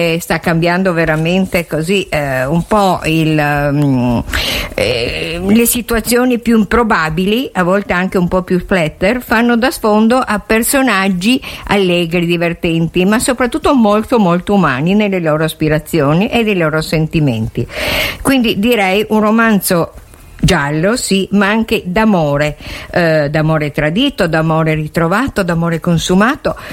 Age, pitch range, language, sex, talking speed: 50-69, 165-215 Hz, Italian, female, 125 wpm